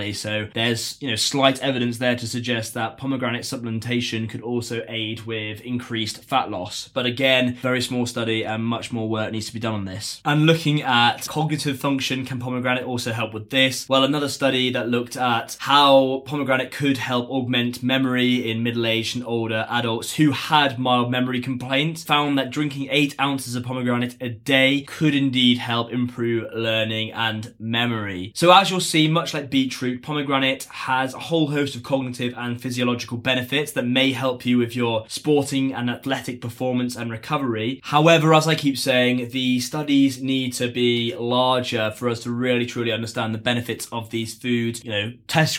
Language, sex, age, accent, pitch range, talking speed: English, male, 20-39, British, 120-135 Hz, 180 wpm